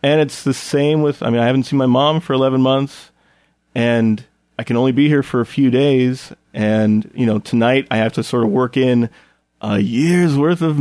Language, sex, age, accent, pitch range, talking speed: English, male, 30-49, American, 115-150 Hz, 220 wpm